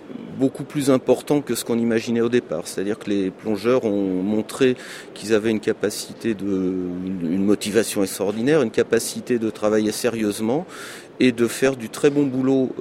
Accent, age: French, 40-59